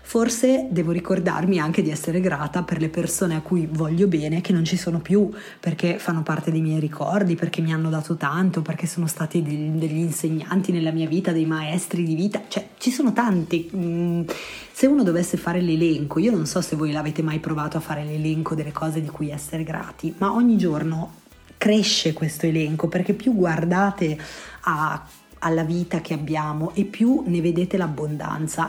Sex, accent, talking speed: female, native, 180 wpm